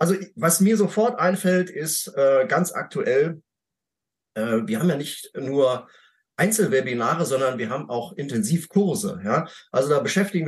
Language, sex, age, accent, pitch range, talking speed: German, male, 30-49, German, 140-195 Hz, 145 wpm